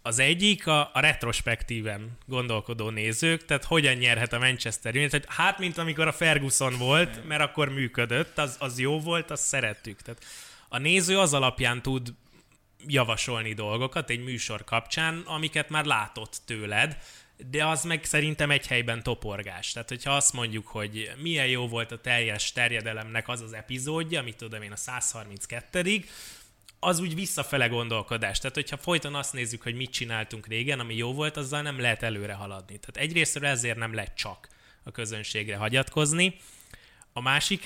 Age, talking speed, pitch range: 20-39, 160 wpm, 115-150 Hz